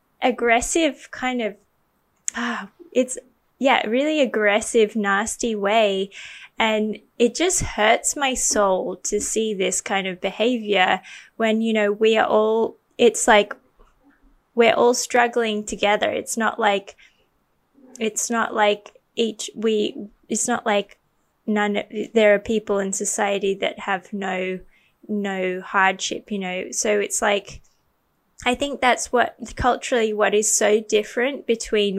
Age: 10-29